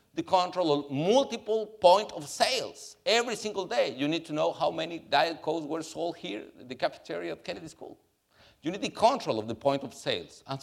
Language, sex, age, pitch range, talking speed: English, male, 50-69, 115-175 Hz, 210 wpm